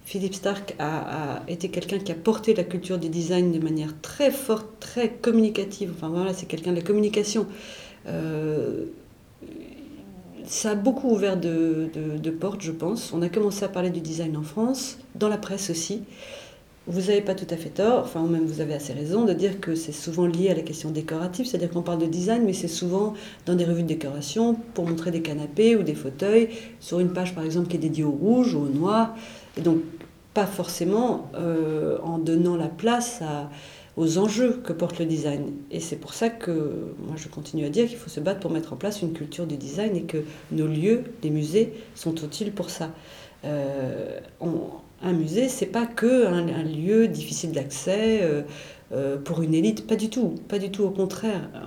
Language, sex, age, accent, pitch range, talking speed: French, female, 40-59, French, 160-205 Hz, 210 wpm